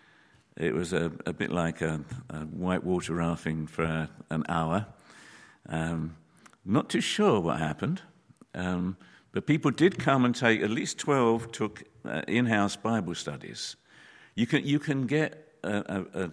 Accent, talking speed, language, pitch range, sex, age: British, 155 wpm, English, 80-90 Hz, male, 50-69